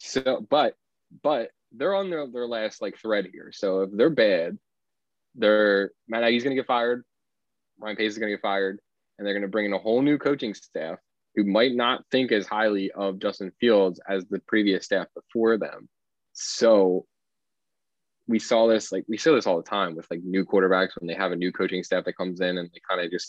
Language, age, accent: English, 20-39, American